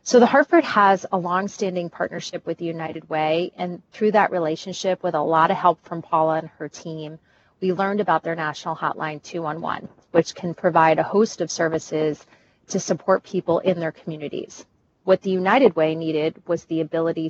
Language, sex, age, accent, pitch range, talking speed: English, female, 30-49, American, 160-185 Hz, 185 wpm